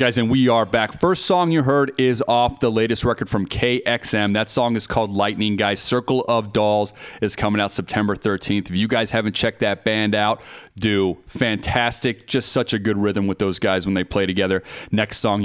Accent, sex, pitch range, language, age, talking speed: American, male, 95-120 Hz, English, 30-49, 210 wpm